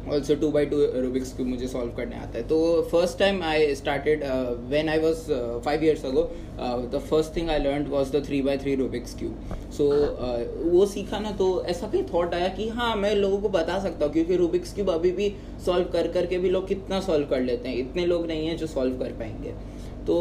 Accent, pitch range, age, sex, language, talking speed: native, 140-175 Hz, 20-39, male, Hindi, 225 wpm